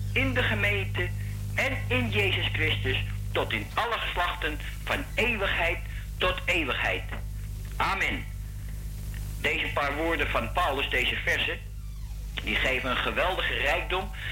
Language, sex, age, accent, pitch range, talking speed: Dutch, male, 50-69, Dutch, 100-110 Hz, 115 wpm